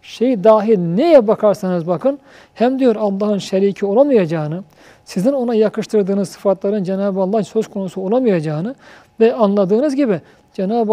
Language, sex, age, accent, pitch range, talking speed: Turkish, male, 50-69, native, 180-235 Hz, 125 wpm